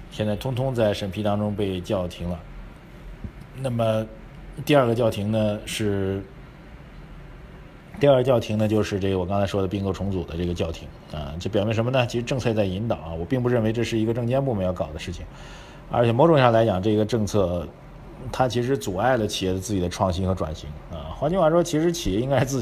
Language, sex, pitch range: Chinese, male, 95-125 Hz